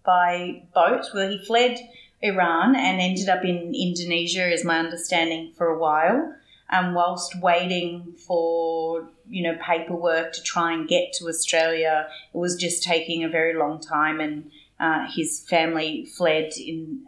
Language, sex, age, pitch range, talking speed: English, female, 30-49, 160-185 Hz, 150 wpm